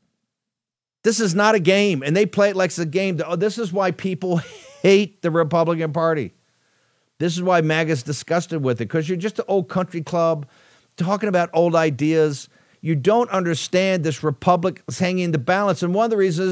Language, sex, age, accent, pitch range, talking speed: English, male, 50-69, American, 155-195 Hz, 195 wpm